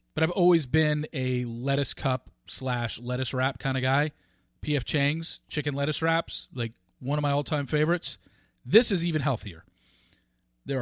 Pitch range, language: 125-185 Hz, English